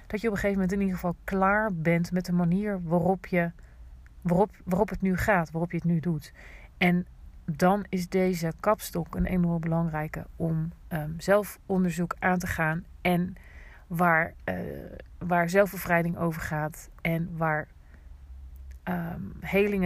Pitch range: 160-185 Hz